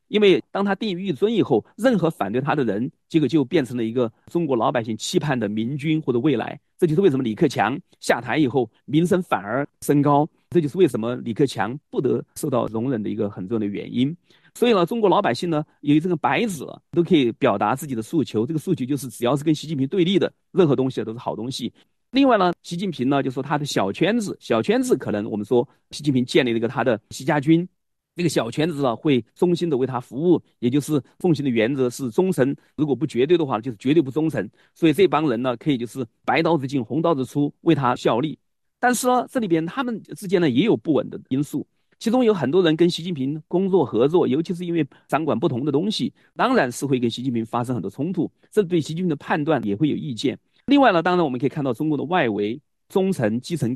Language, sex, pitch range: Chinese, male, 125-175 Hz